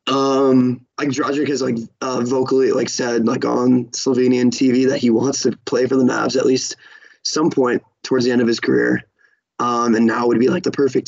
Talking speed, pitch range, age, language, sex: 210 wpm, 125-135 Hz, 20-39, English, male